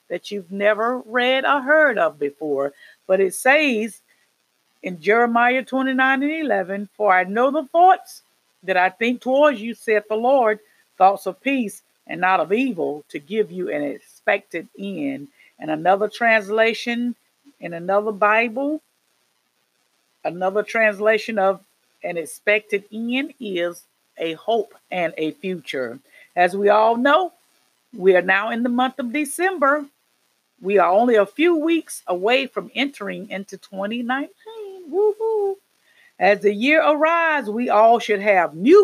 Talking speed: 145 wpm